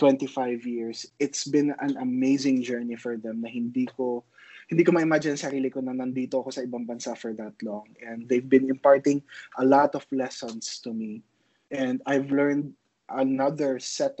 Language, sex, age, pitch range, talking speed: English, male, 20-39, 115-135 Hz, 170 wpm